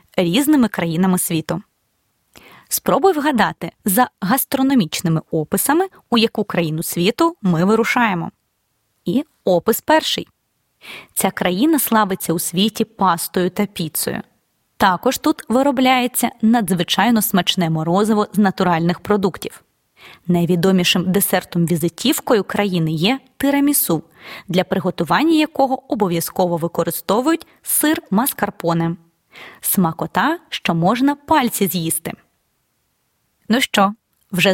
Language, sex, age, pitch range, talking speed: Ukrainian, female, 20-39, 175-245 Hz, 95 wpm